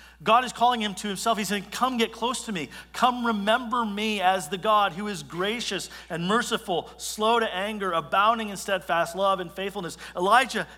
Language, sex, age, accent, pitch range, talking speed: English, male, 40-59, American, 170-220 Hz, 190 wpm